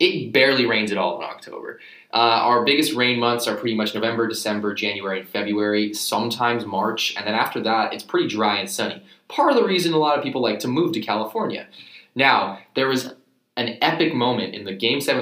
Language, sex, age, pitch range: English, male, 20-39, 100-120 Hz